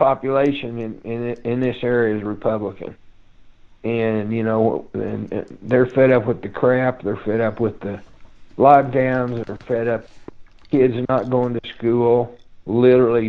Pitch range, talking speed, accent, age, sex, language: 105-125 Hz, 155 wpm, American, 60-79, male, English